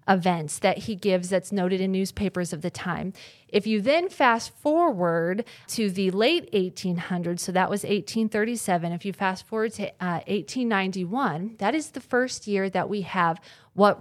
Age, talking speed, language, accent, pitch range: 30-49, 170 wpm, English, American, 180-210 Hz